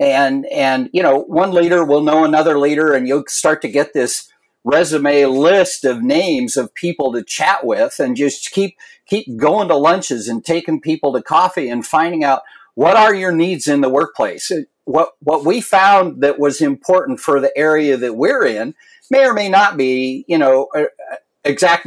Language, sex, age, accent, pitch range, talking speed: English, male, 50-69, American, 140-195 Hz, 185 wpm